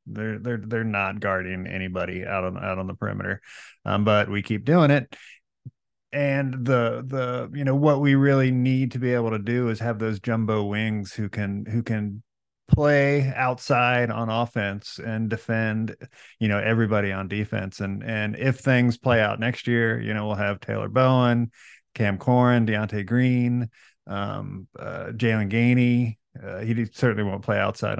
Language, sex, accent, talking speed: English, male, American, 170 wpm